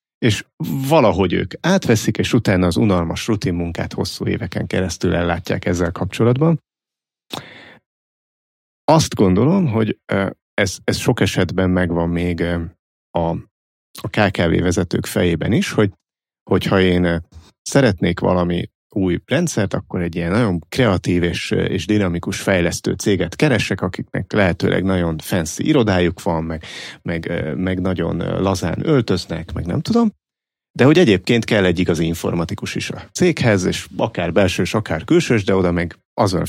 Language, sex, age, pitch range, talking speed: Hungarian, male, 30-49, 85-110 Hz, 135 wpm